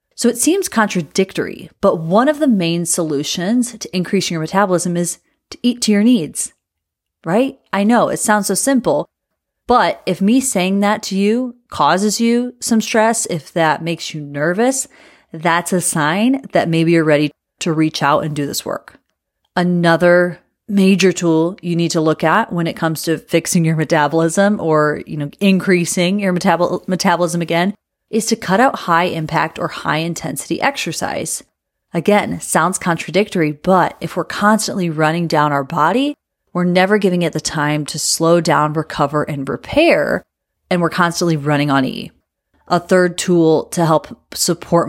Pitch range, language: 160-200 Hz, English